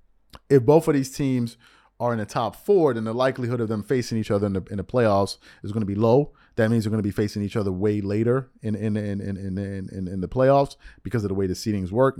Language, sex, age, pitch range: English, male, 30-49, 105-135 Hz